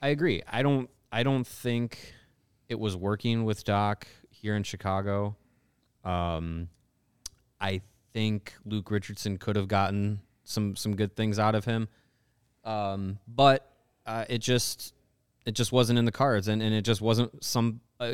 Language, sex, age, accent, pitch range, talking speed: English, male, 20-39, American, 100-115 Hz, 160 wpm